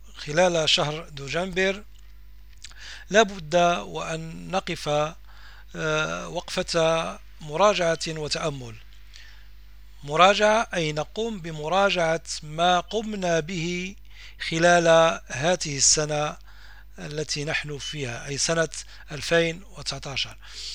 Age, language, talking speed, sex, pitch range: 40-59, Arabic, 70 wpm, male, 155-190 Hz